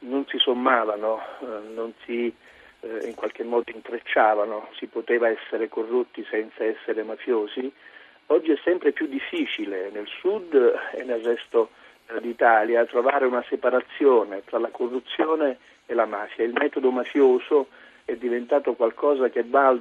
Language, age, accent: Italian, 50-69, native